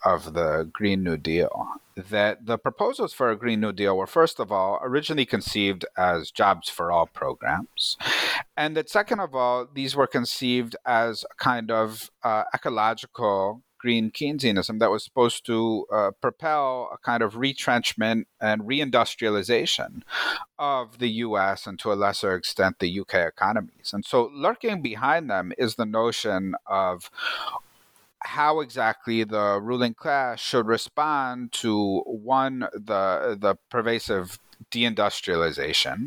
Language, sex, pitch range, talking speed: English, male, 105-135 Hz, 140 wpm